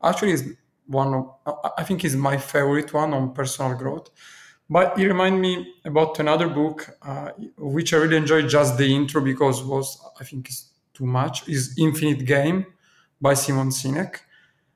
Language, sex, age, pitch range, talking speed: Italian, male, 40-59, 130-155 Hz, 165 wpm